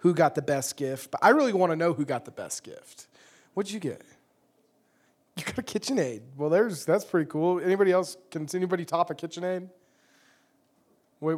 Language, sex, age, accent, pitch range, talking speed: English, male, 20-39, American, 160-270 Hz, 190 wpm